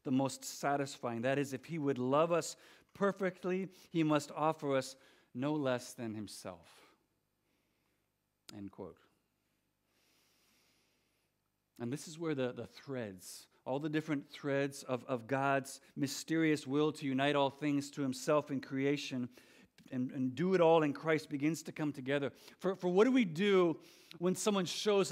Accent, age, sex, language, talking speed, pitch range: American, 50-69, male, English, 155 wpm, 145-220 Hz